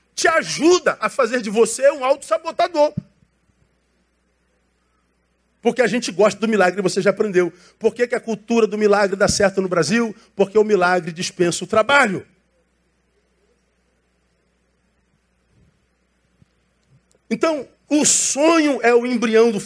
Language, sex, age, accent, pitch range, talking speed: Portuguese, male, 50-69, Brazilian, 160-235 Hz, 125 wpm